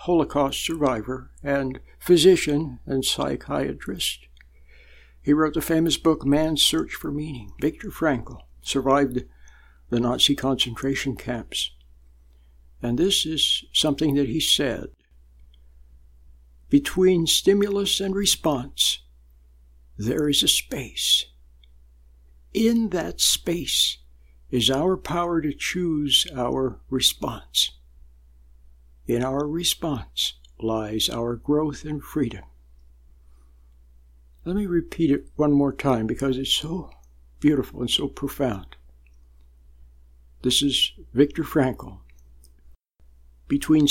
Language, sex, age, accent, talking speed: English, male, 60-79, American, 100 wpm